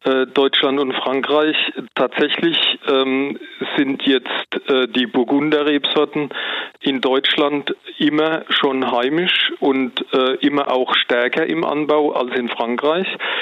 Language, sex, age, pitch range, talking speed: German, male, 40-59, 120-140 Hz, 110 wpm